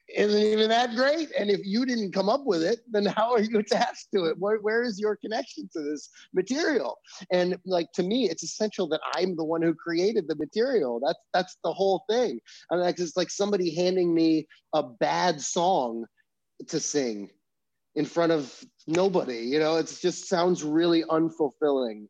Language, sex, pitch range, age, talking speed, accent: English, male, 120-190 Hz, 30-49, 185 wpm, American